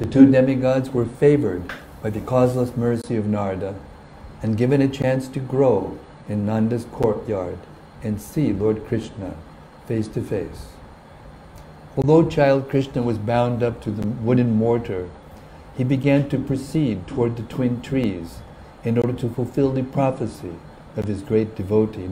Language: English